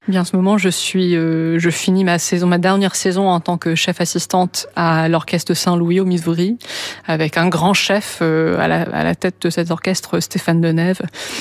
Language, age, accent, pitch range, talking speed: French, 20-39, French, 165-185 Hz, 210 wpm